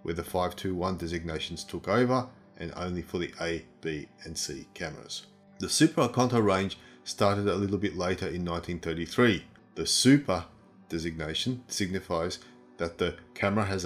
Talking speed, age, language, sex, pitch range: 145 wpm, 30-49, English, male, 85-110 Hz